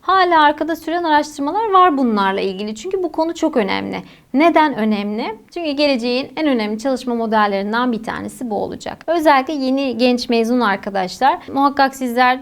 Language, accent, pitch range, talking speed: Turkish, native, 215-290 Hz, 150 wpm